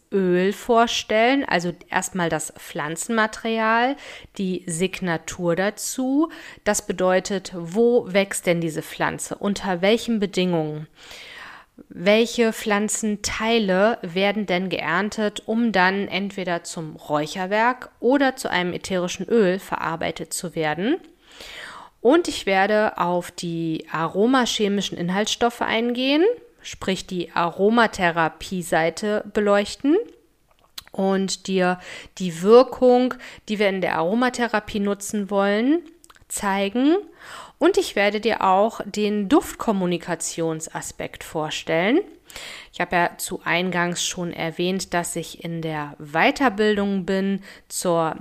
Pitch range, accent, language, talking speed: 175-225 Hz, German, German, 105 wpm